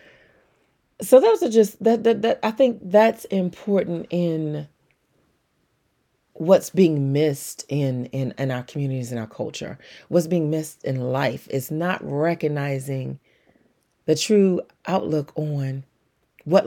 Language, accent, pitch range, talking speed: English, American, 140-170 Hz, 130 wpm